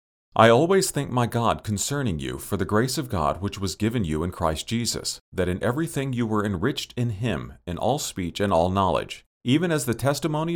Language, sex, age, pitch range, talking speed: English, male, 40-59, 90-125 Hz, 210 wpm